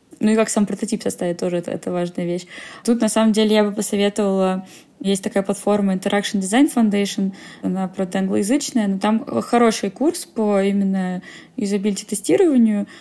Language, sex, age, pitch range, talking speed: Russian, female, 20-39, 195-225 Hz, 155 wpm